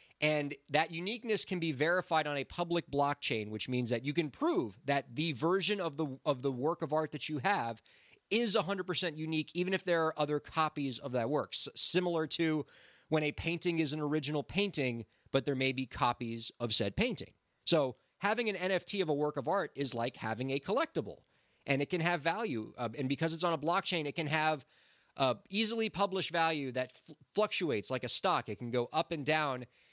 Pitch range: 130-170 Hz